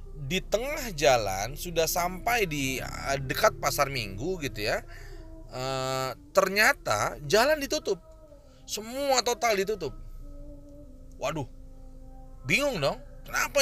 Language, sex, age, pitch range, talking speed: Indonesian, male, 30-49, 130-195 Hz, 95 wpm